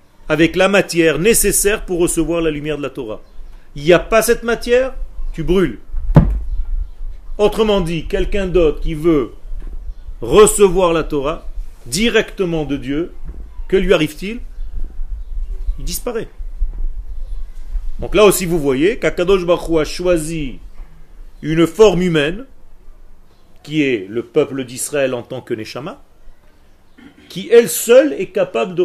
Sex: male